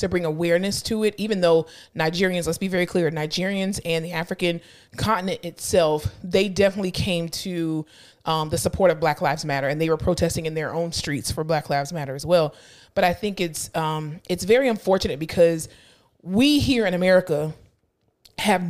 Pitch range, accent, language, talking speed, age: 155-190 Hz, American, English, 185 wpm, 30-49